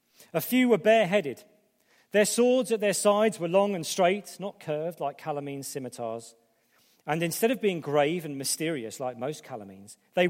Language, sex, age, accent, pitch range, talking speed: English, male, 40-59, British, 135-195 Hz, 170 wpm